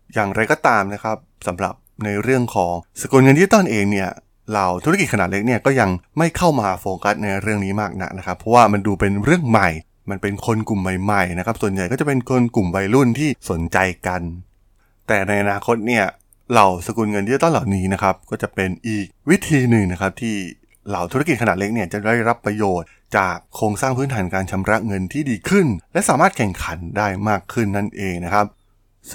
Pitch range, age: 95-120 Hz, 20-39